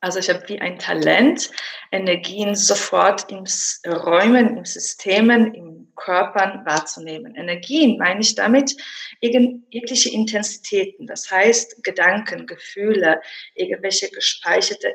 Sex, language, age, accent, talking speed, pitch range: female, German, 20-39, German, 110 wpm, 200-245 Hz